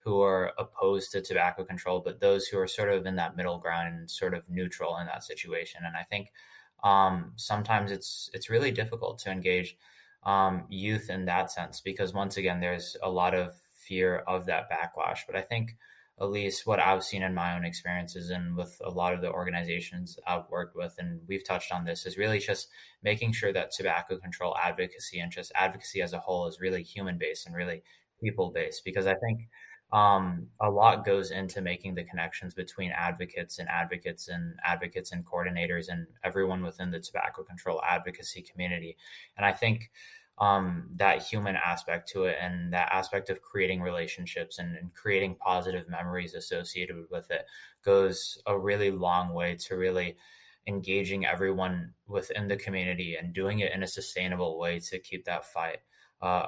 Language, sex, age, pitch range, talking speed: English, male, 20-39, 90-100 Hz, 185 wpm